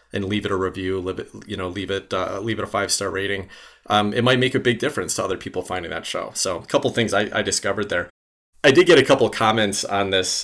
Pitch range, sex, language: 95-115 Hz, male, English